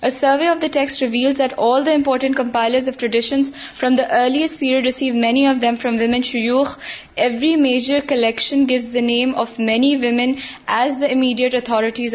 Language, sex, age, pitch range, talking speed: Urdu, female, 10-29, 235-275 Hz, 185 wpm